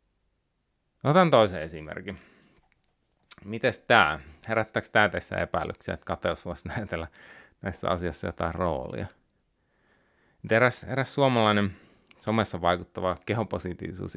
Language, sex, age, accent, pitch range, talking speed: Finnish, male, 30-49, native, 95-125 Hz, 100 wpm